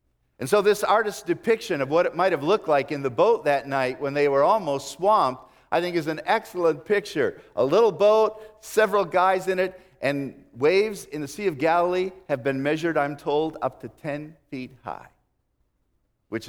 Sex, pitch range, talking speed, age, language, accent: male, 135-195 Hz, 195 wpm, 50-69, English, American